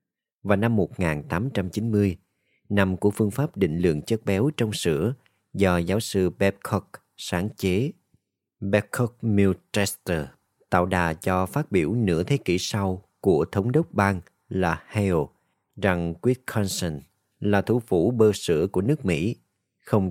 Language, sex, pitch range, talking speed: Vietnamese, male, 90-115 Hz, 140 wpm